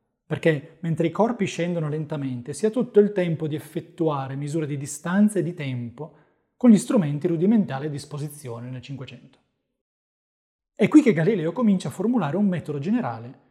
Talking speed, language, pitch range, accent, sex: 165 wpm, Italian, 140-195 Hz, native, male